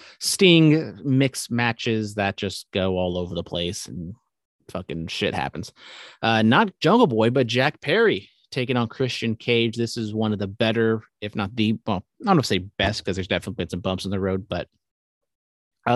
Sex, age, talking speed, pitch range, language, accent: male, 30-49, 190 wpm, 100-130 Hz, English, American